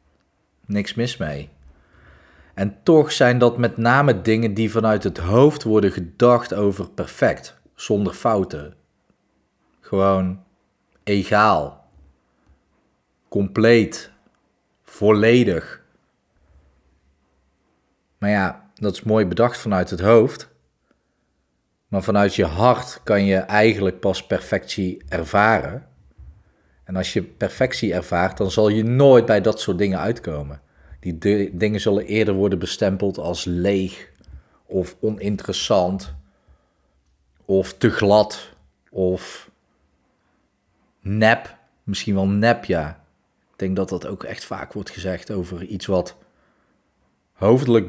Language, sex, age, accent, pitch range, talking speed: Dutch, male, 40-59, Dutch, 80-105 Hz, 115 wpm